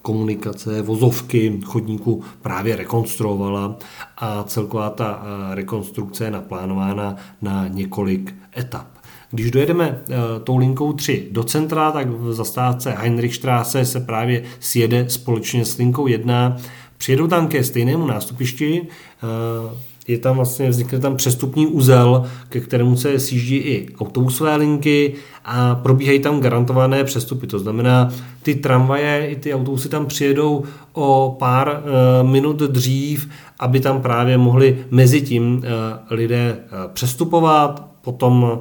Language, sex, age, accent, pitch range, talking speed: Czech, male, 40-59, native, 115-135 Hz, 125 wpm